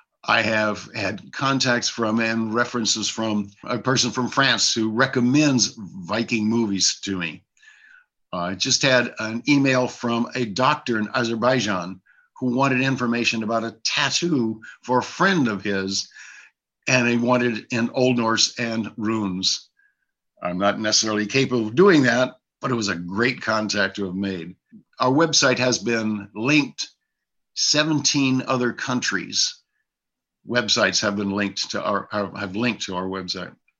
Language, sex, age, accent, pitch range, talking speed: English, male, 60-79, American, 110-135 Hz, 150 wpm